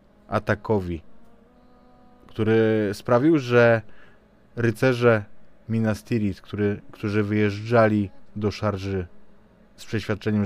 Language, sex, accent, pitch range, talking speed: Polish, male, native, 95-120 Hz, 70 wpm